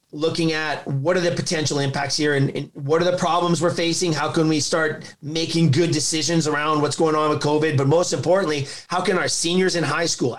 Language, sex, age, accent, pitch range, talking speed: English, male, 30-49, American, 150-170 Hz, 225 wpm